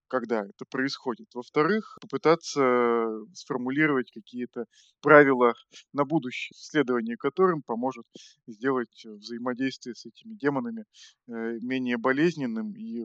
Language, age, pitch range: Russian, 20-39, 125-160 Hz